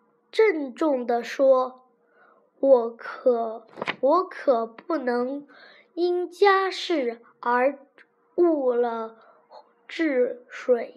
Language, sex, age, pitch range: Chinese, female, 10-29, 240-325 Hz